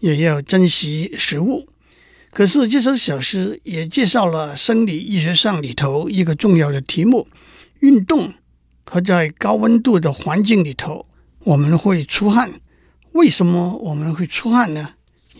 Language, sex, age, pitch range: Chinese, male, 60-79, 160-210 Hz